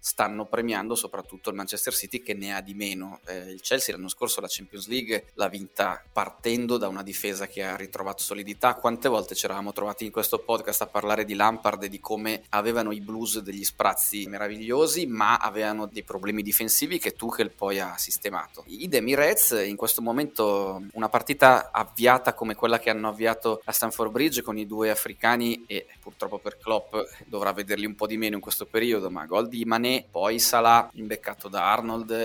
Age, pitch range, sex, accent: 20-39, 100-115 Hz, male, native